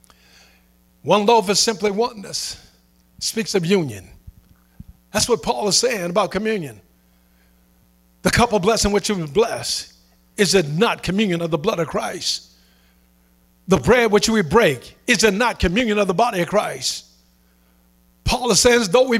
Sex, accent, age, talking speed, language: male, American, 50-69, 155 wpm, English